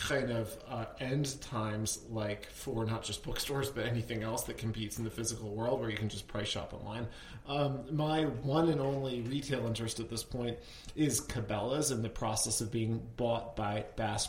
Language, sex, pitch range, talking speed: English, male, 110-135 Hz, 195 wpm